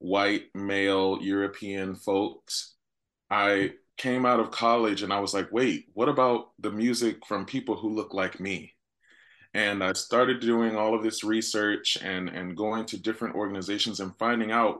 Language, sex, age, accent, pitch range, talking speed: English, male, 20-39, American, 95-115 Hz, 165 wpm